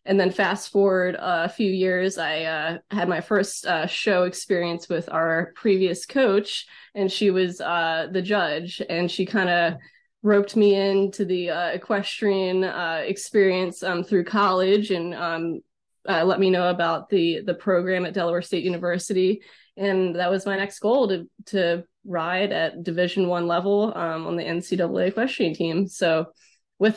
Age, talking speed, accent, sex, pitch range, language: 20-39, 165 wpm, American, female, 175-200 Hz, English